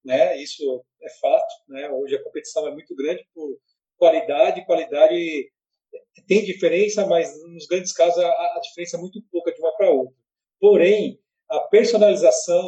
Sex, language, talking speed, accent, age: male, Portuguese, 155 wpm, Brazilian, 40-59